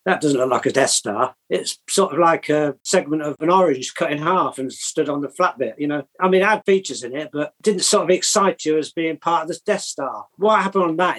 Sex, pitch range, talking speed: male, 135-165 Hz, 275 wpm